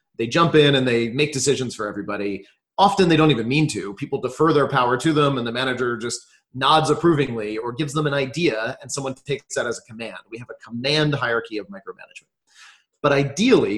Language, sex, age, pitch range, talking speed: English, male, 30-49, 120-160 Hz, 210 wpm